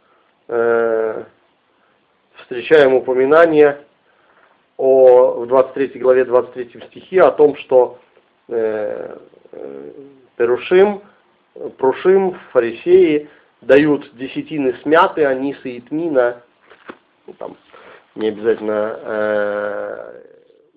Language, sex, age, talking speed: Russian, male, 40-59, 70 wpm